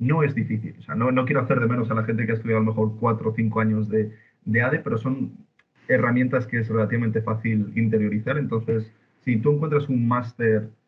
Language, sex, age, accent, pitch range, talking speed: Spanish, male, 30-49, Spanish, 110-130 Hz, 225 wpm